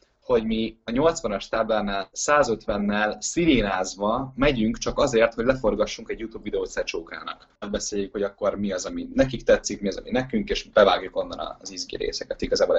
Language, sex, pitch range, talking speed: Hungarian, male, 105-135 Hz, 165 wpm